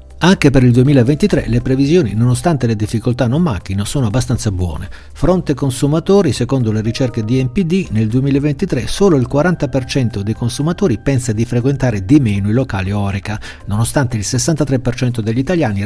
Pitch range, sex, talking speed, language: 105-145 Hz, male, 155 wpm, Italian